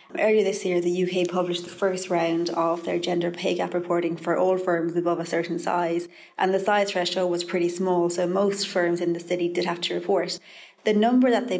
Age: 20-39